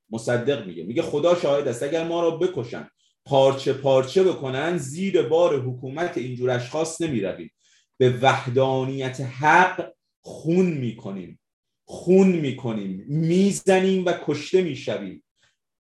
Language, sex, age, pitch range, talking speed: Persian, male, 30-49, 135-185 Hz, 125 wpm